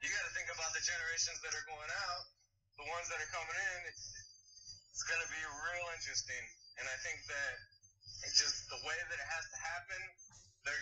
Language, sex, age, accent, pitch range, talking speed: English, male, 30-49, American, 100-170 Hz, 200 wpm